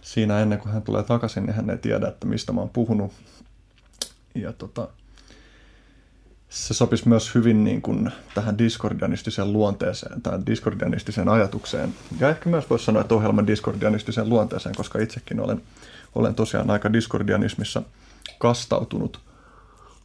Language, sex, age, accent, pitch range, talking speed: Finnish, male, 30-49, native, 105-115 Hz, 140 wpm